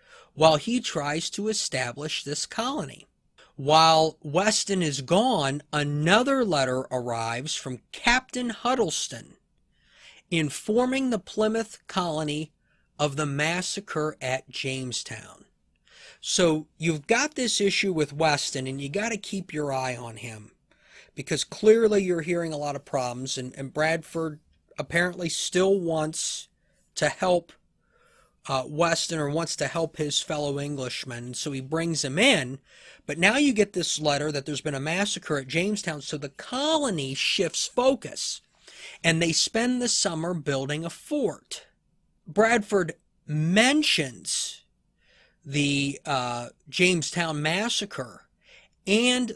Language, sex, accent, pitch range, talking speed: English, male, American, 145-200 Hz, 125 wpm